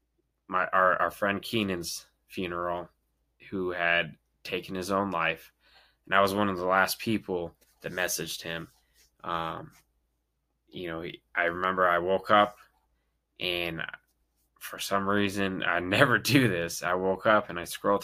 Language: English